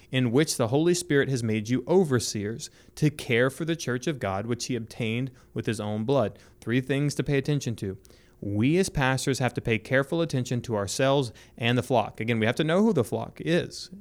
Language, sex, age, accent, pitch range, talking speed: English, male, 30-49, American, 110-140 Hz, 220 wpm